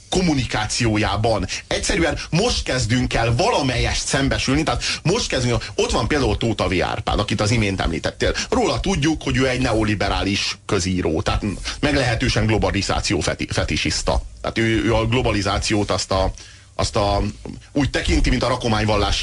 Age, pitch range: 30-49, 100-125 Hz